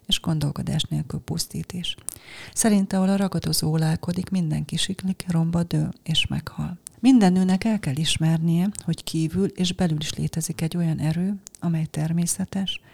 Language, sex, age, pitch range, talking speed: Hungarian, female, 30-49, 155-175 Hz, 135 wpm